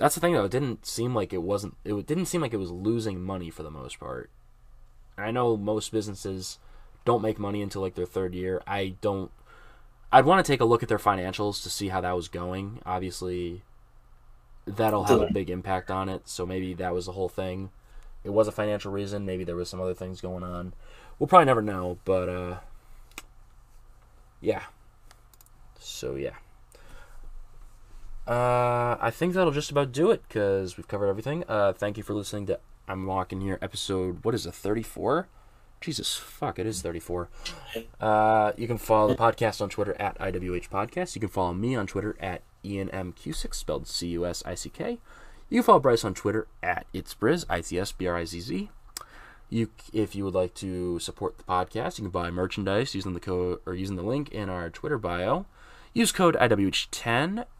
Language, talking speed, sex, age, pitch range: English, 200 wpm, male, 20-39, 90-115 Hz